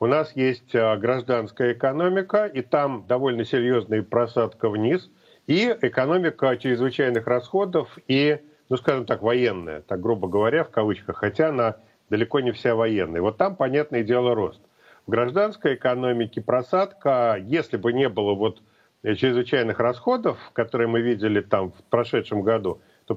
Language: Russian